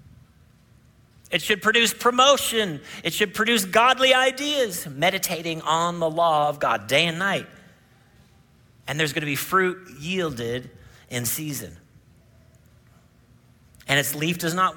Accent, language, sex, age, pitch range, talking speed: American, English, male, 40-59, 130-200 Hz, 125 wpm